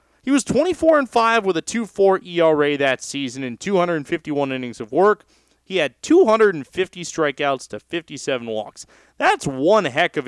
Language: English